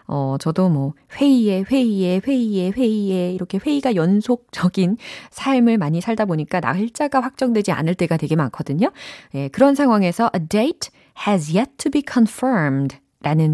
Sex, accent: female, native